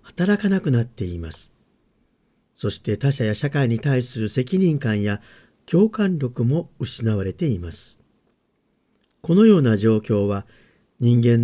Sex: male